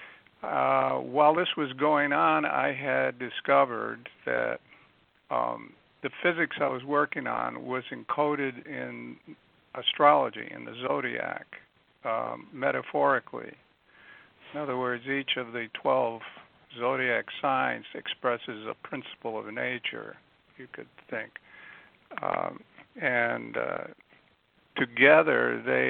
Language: English